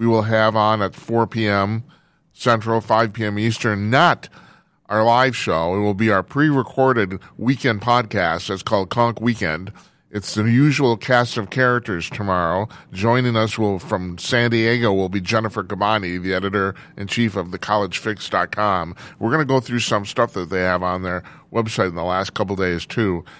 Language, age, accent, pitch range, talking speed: English, 40-59, American, 100-120 Hz, 165 wpm